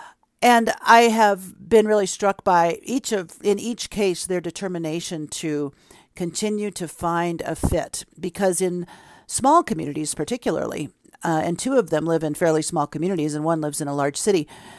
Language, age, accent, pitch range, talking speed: English, 50-69, American, 155-190 Hz, 170 wpm